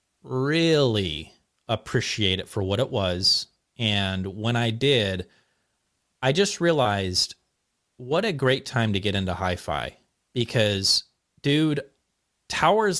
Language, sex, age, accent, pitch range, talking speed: English, male, 30-49, American, 100-140 Hz, 120 wpm